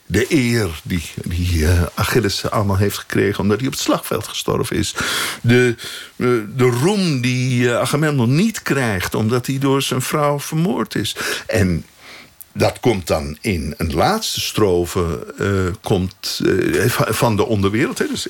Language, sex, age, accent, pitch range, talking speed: Dutch, male, 60-79, Dutch, 95-160 Hz, 150 wpm